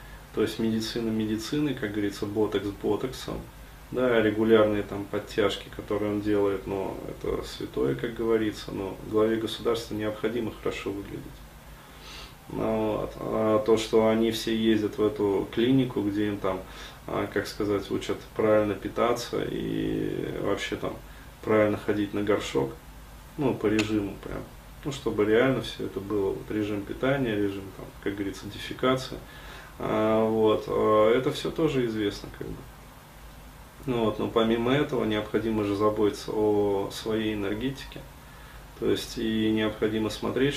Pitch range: 105-115 Hz